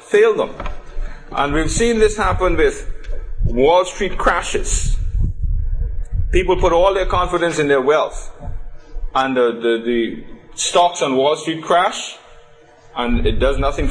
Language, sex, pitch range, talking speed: English, male, 145-215 Hz, 140 wpm